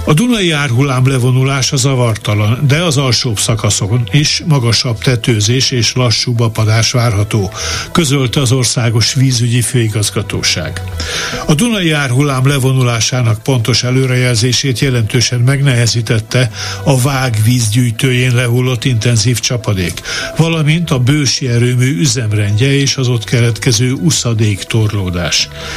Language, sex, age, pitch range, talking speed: Hungarian, male, 60-79, 115-140 Hz, 105 wpm